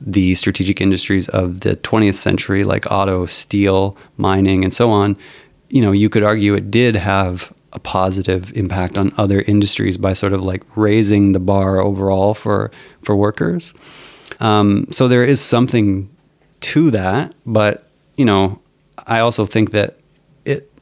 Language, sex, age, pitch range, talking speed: English, male, 30-49, 100-120 Hz, 155 wpm